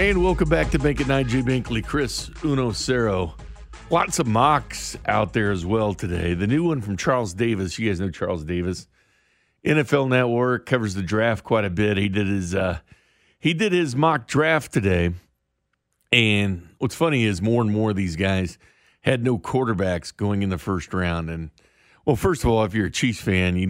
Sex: male